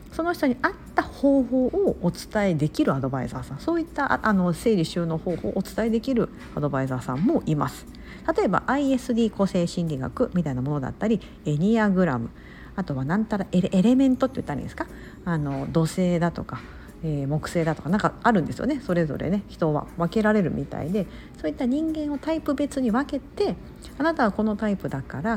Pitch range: 165-270 Hz